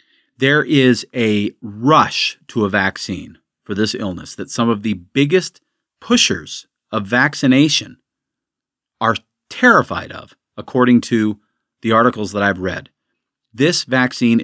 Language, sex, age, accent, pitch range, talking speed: English, male, 40-59, American, 100-130 Hz, 125 wpm